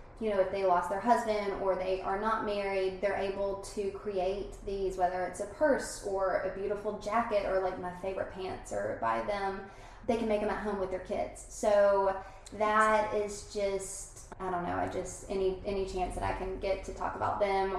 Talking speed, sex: 210 wpm, female